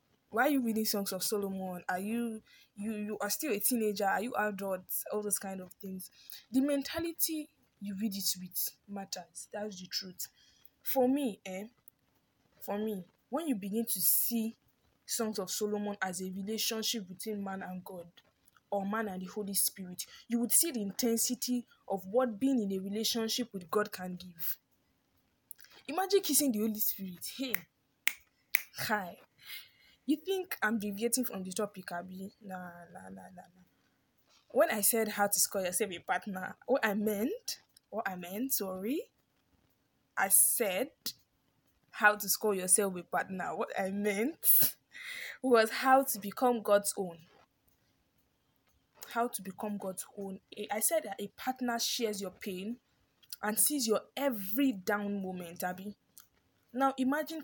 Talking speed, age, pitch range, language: 160 wpm, 10-29, 190-235 Hz, English